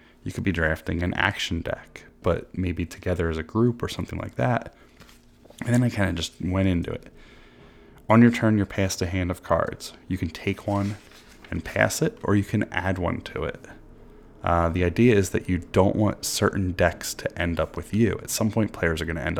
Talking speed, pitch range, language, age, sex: 225 wpm, 85-100 Hz, English, 20-39, male